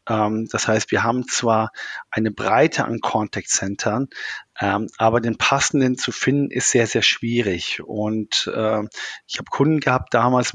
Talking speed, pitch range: 140 wpm, 110-125 Hz